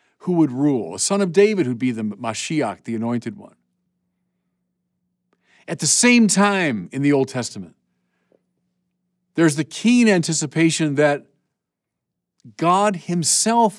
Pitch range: 135-185 Hz